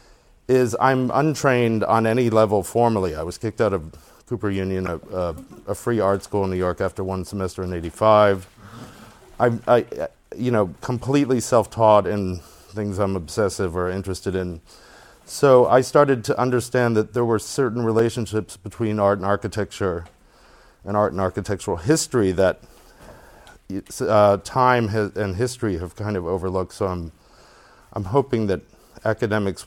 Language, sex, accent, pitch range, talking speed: English, male, American, 95-120 Hz, 155 wpm